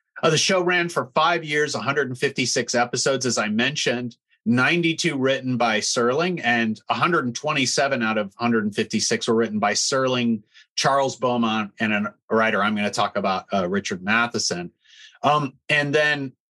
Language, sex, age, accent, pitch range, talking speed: English, male, 30-49, American, 115-150 Hz, 150 wpm